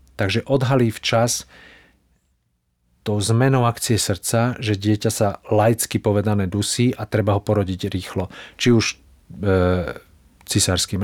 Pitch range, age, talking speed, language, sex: 100-120 Hz, 40-59, 120 wpm, Slovak, male